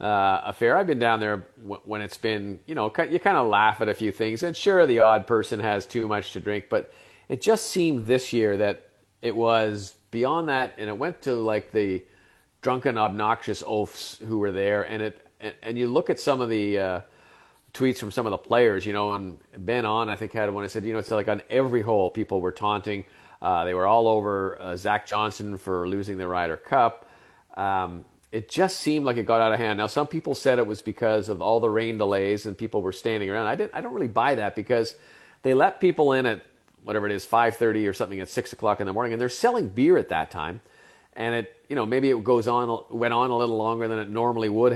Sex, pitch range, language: male, 105-125 Hz, English